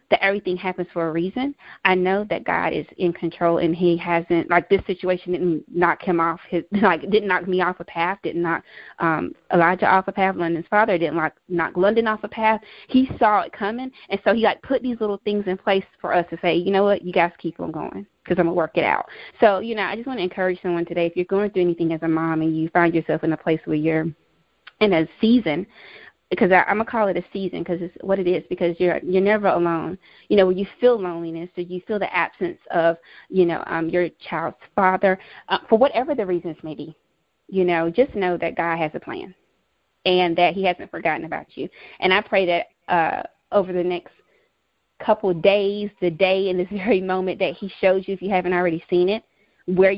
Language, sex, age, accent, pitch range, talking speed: English, female, 20-39, American, 170-200 Hz, 235 wpm